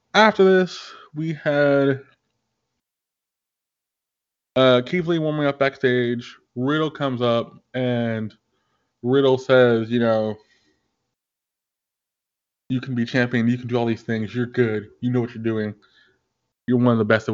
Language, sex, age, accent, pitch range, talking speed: English, male, 20-39, American, 110-135 Hz, 140 wpm